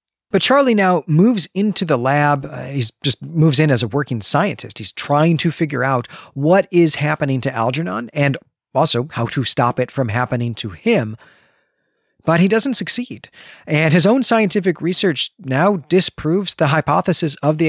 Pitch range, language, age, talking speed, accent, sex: 130-175 Hz, English, 40-59, 170 wpm, American, male